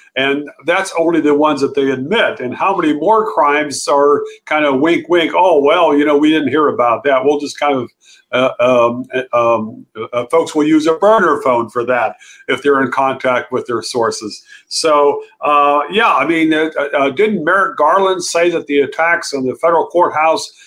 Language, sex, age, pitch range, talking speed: English, male, 50-69, 135-170 Hz, 195 wpm